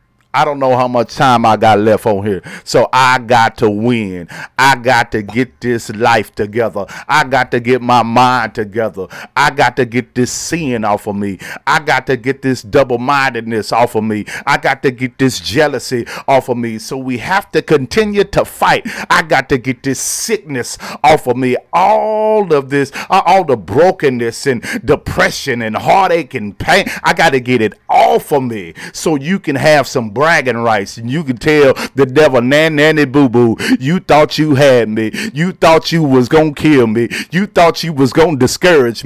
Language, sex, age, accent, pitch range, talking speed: English, male, 40-59, American, 120-160 Hz, 200 wpm